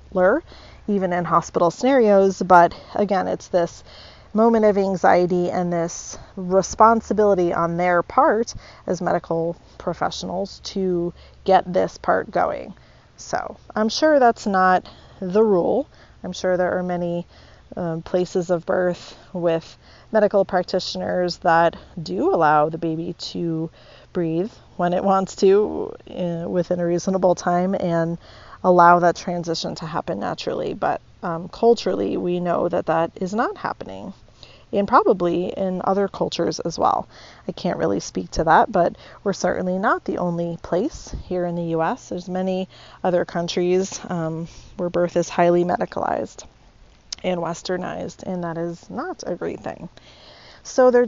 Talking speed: 145 wpm